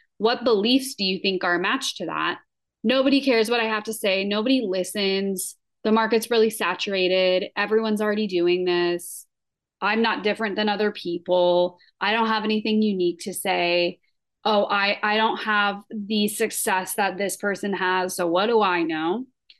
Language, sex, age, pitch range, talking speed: English, female, 20-39, 185-225 Hz, 170 wpm